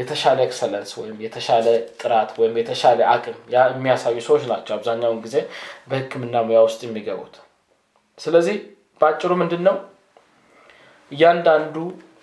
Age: 20-39